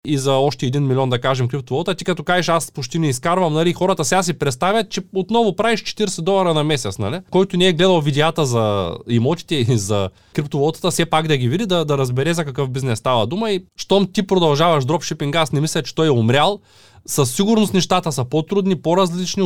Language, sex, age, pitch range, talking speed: Bulgarian, male, 20-39, 125-180 Hz, 215 wpm